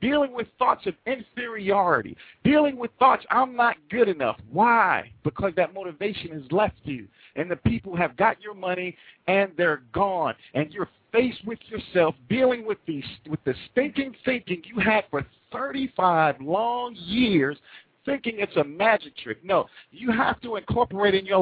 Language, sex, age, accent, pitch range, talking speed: English, male, 50-69, American, 170-225 Hz, 165 wpm